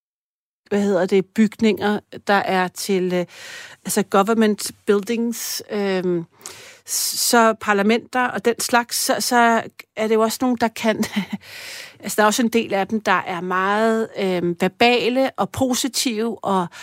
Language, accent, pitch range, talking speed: Danish, native, 190-240 Hz, 145 wpm